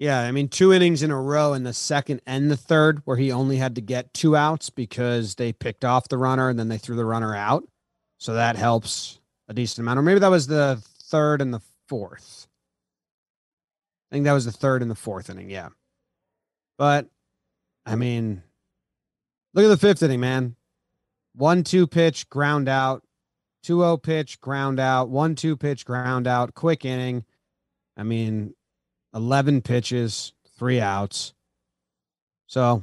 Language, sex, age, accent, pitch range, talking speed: English, male, 30-49, American, 120-150 Hz, 170 wpm